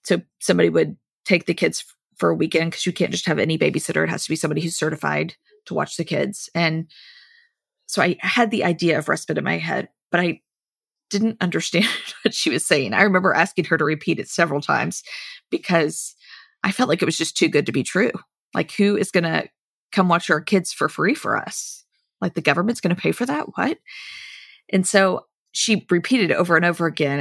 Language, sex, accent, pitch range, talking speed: English, female, American, 165-220 Hz, 215 wpm